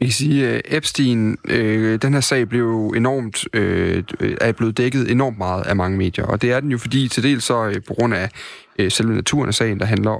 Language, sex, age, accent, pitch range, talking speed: Danish, male, 30-49, native, 105-125 Hz, 230 wpm